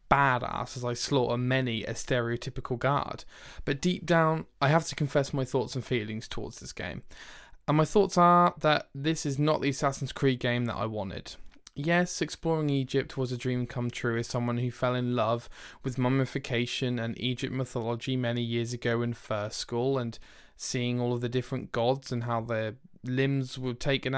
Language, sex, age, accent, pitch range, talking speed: English, male, 20-39, British, 120-140 Hz, 185 wpm